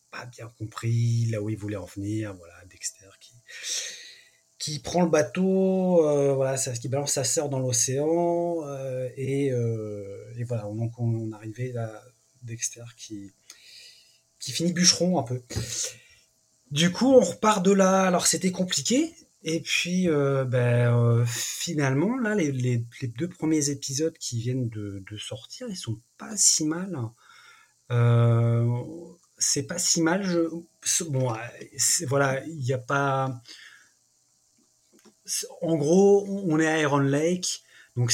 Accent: French